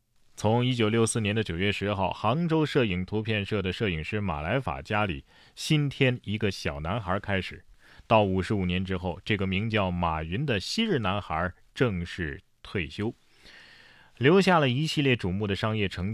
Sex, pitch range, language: male, 95-120 Hz, Chinese